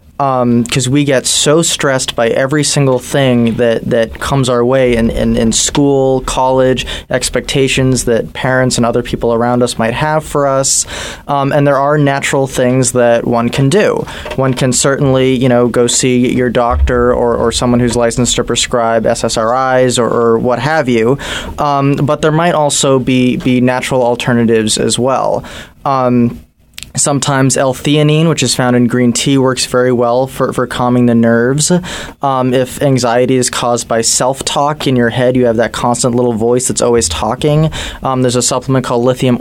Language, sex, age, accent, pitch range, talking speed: English, male, 20-39, American, 120-140 Hz, 180 wpm